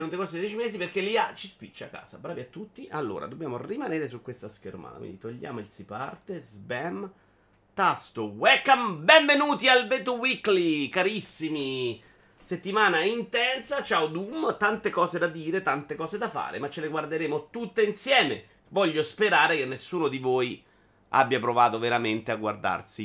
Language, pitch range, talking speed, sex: Italian, 110-175 Hz, 165 wpm, male